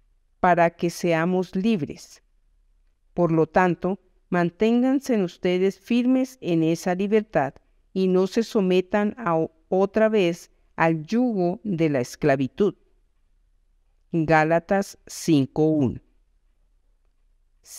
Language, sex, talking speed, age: Spanish, female, 90 wpm, 50-69